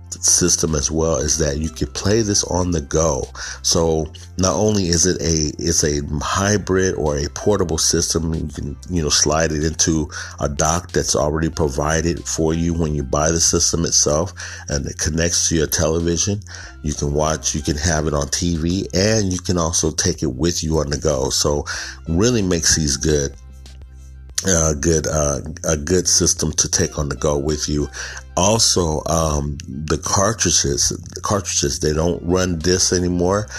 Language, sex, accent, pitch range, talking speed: English, male, American, 75-90 Hz, 180 wpm